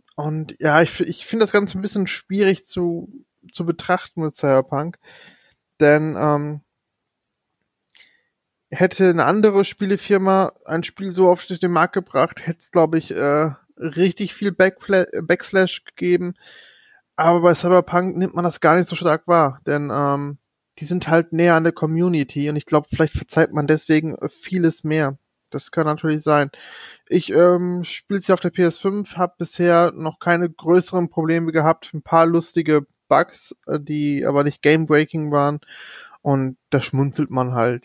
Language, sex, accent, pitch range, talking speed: German, male, German, 145-180 Hz, 160 wpm